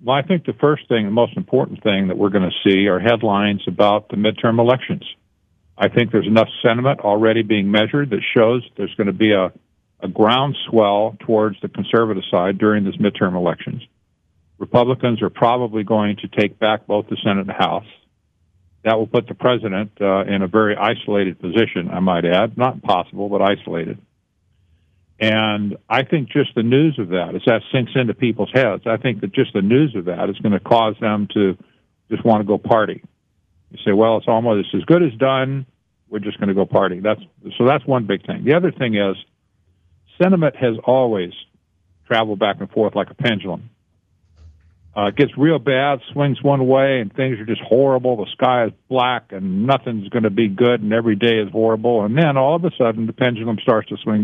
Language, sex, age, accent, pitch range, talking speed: English, male, 50-69, American, 100-125 Hz, 205 wpm